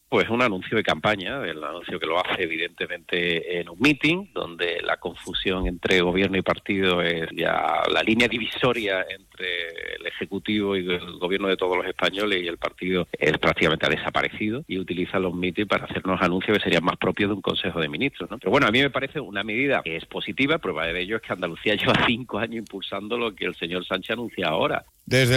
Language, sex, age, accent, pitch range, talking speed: Spanish, male, 40-59, Spanish, 105-165 Hz, 205 wpm